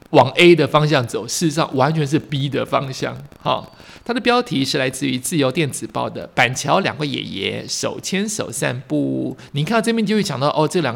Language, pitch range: Chinese, 135-165 Hz